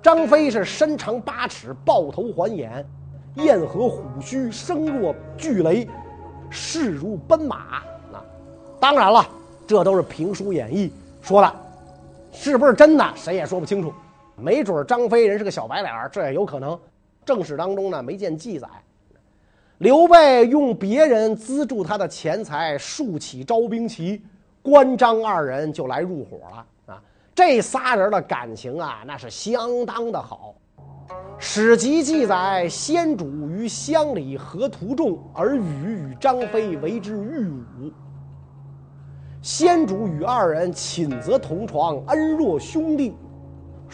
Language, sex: Chinese, male